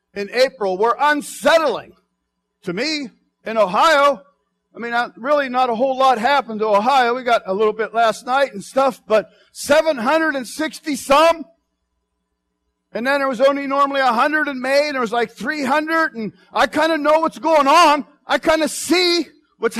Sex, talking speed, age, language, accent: male, 175 wpm, 50-69, English, American